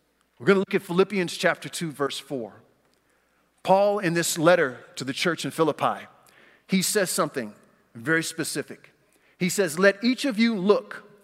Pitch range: 155-205 Hz